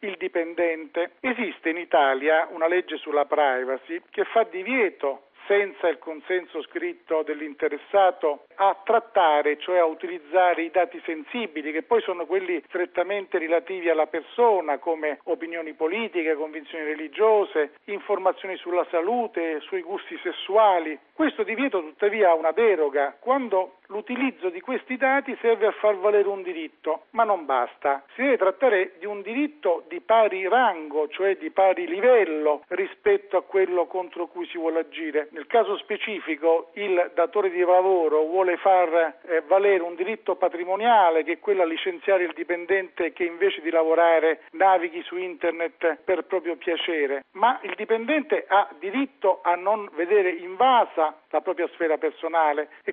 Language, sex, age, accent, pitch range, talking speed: Italian, male, 50-69, native, 165-215 Hz, 145 wpm